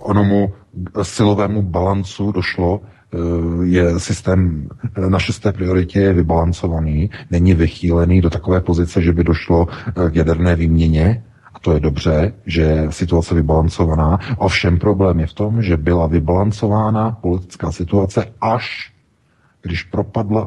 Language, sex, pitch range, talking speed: Czech, male, 85-105 Hz, 125 wpm